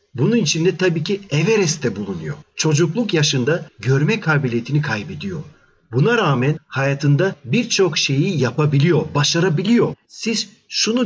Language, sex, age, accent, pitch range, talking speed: Turkish, male, 40-59, native, 140-185 Hz, 115 wpm